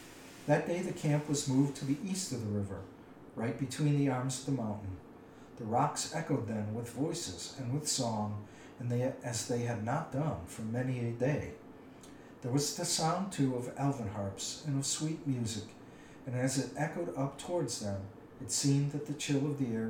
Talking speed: 200 wpm